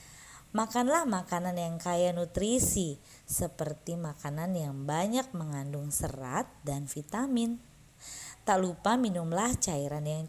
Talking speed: 105 wpm